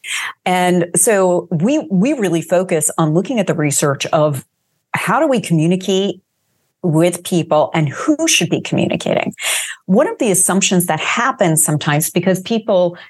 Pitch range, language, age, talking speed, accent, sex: 165-210 Hz, English, 40-59, 145 wpm, American, female